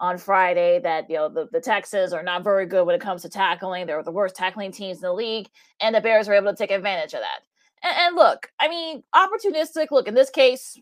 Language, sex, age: English, female, 30-49